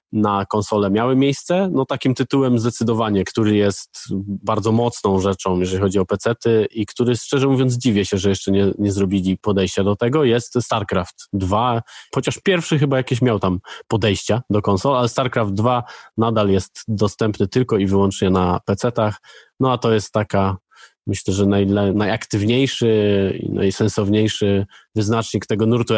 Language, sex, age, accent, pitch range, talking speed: Polish, male, 20-39, native, 100-120 Hz, 155 wpm